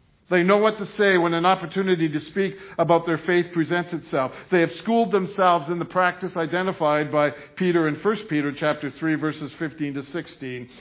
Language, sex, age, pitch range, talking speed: English, male, 60-79, 140-185 Hz, 190 wpm